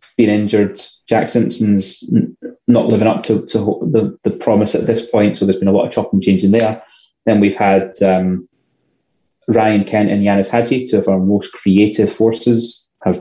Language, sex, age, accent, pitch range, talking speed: English, male, 20-39, British, 100-120 Hz, 175 wpm